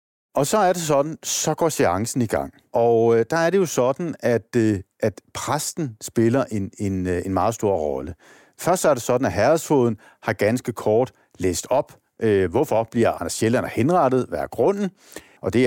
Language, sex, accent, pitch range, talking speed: Danish, male, native, 105-130 Hz, 180 wpm